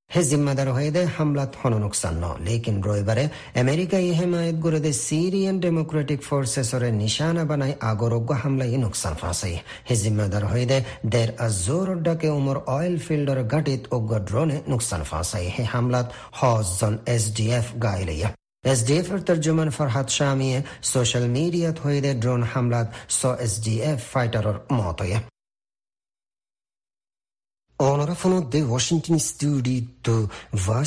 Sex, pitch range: male, 110-140 Hz